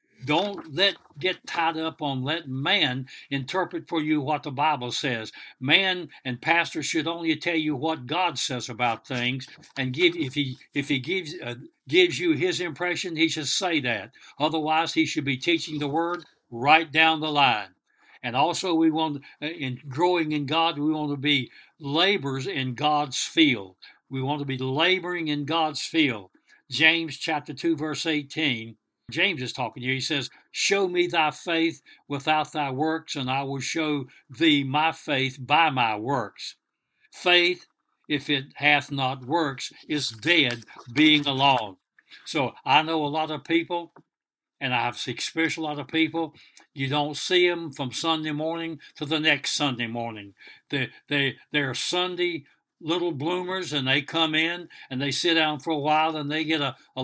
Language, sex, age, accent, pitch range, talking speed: English, male, 60-79, American, 135-160 Hz, 175 wpm